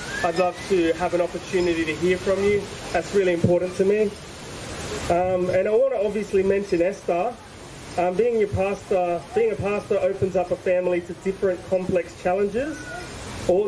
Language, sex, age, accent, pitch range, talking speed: English, male, 30-49, Australian, 175-200 Hz, 170 wpm